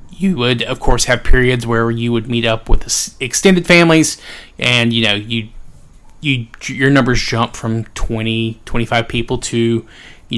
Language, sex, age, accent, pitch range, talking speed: English, male, 30-49, American, 110-135 Hz, 160 wpm